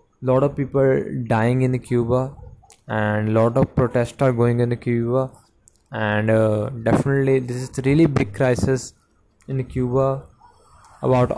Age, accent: 20-39, Indian